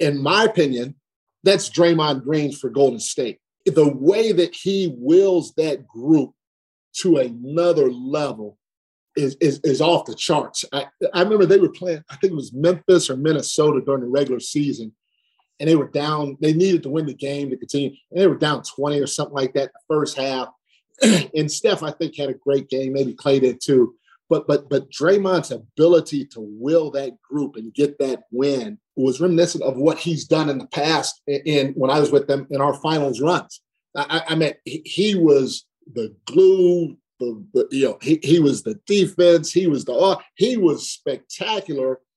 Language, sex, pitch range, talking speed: English, male, 135-165 Hz, 195 wpm